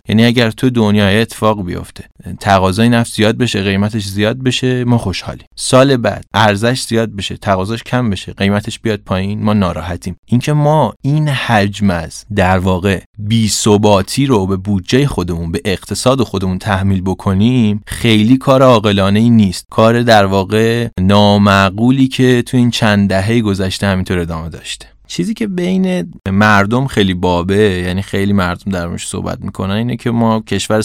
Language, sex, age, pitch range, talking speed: Persian, male, 30-49, 95-115 Hz, 155 wpm